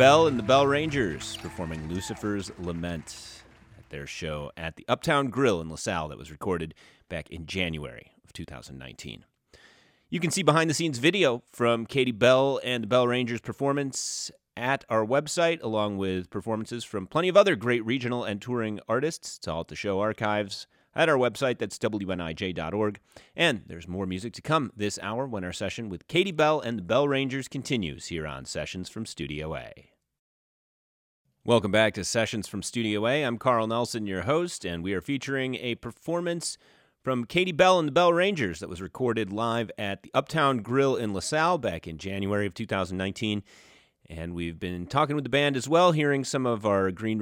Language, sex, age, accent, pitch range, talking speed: English, male, 30-49, American, 95-135 Hz, 180 wpm